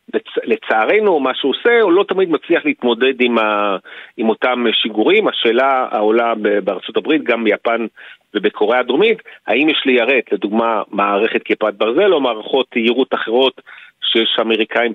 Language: Hebrew